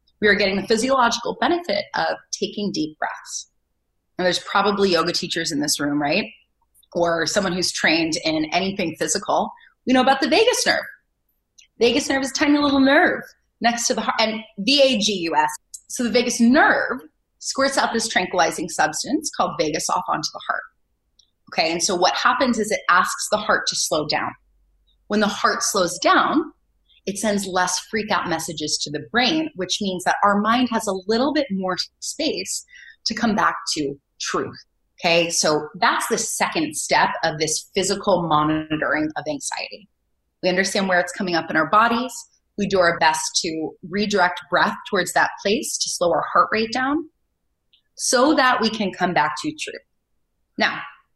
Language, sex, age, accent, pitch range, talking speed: English, female, 30-49, American, 165-240 Hz, 170 wpm